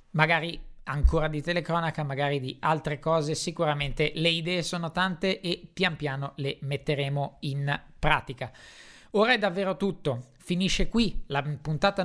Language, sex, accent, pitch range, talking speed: Italian, male, native, 150-185 Hz, 140 wpm